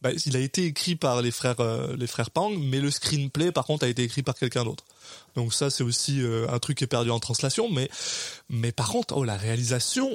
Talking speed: 250 wpm